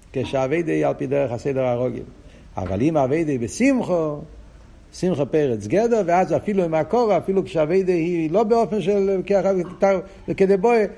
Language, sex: Hebrew, male